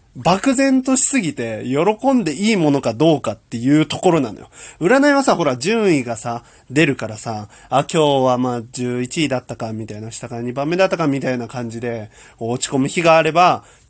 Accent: native